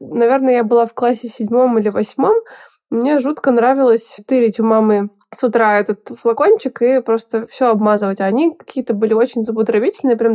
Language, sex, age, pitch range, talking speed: Russian, female, 20-39, 220-255 Hz, 170 wpm